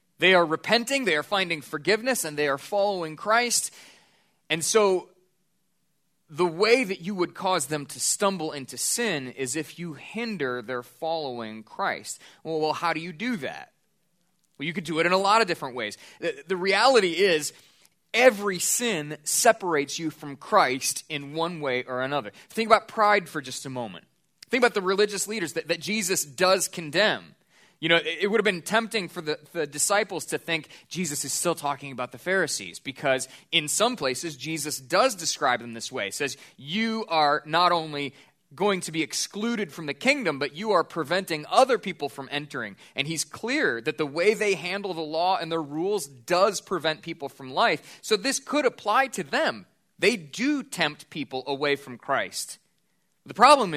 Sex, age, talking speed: male, 20-39, 185 wpm